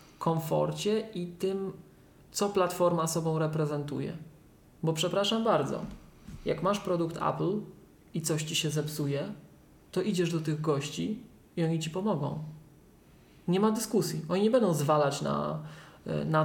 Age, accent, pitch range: 20-39, native, 150-180 Hz